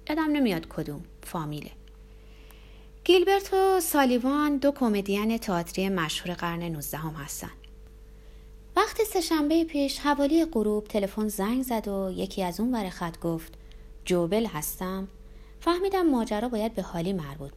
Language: Persian